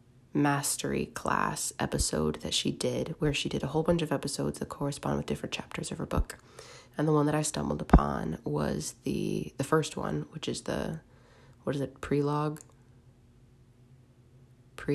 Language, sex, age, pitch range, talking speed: English, female, 20-39, 125-150 Hz, 170 wpm